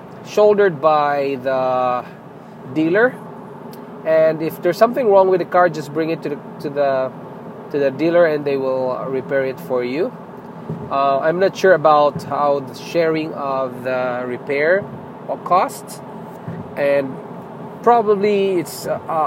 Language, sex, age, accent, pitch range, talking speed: English, male, 20-39, Filipino, 145-200 Hz, 140 wpm